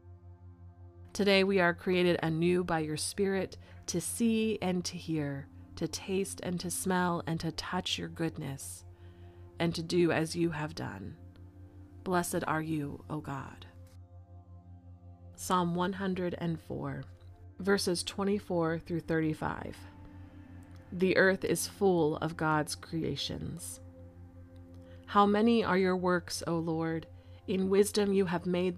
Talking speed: 125 wpm